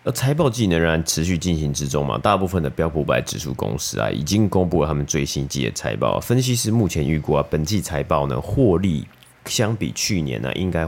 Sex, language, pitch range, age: male, Chinese, 75-95 Hz, 30-49